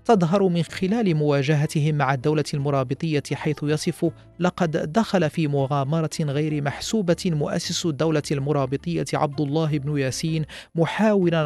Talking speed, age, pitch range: 120 wpm, 40-59, 145-170 Hz